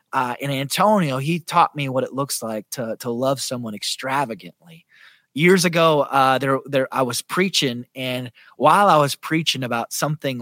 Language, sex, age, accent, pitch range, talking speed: English, male, 30-49, American, 120-160 Hz, 175 wpm